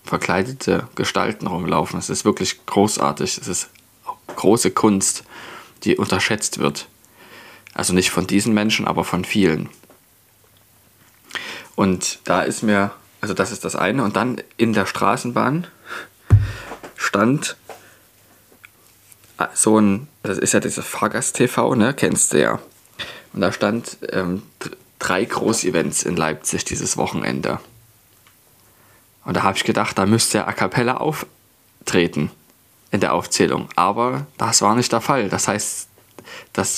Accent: German